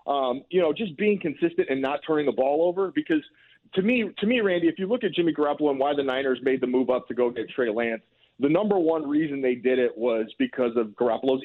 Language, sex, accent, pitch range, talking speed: English, male, American, 120-160 Hz, 250 wpm